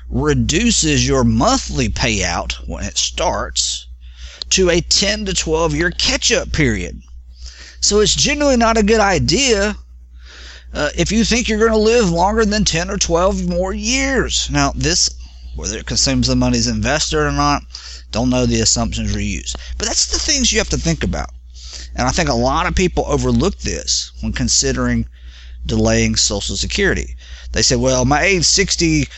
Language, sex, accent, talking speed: English, male, American, 170 wpm